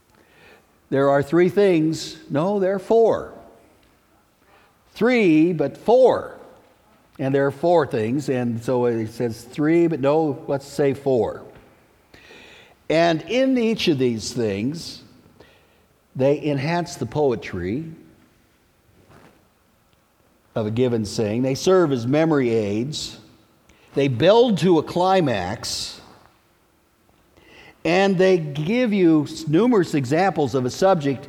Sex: male